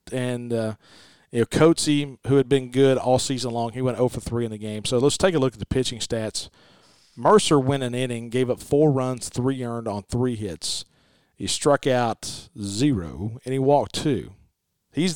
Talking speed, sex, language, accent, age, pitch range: 200 wpm, male, English, American, 40-59, 115-140 Hz